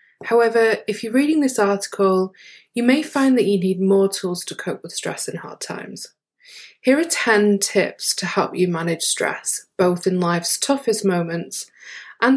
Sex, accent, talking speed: female, British, 175 wpm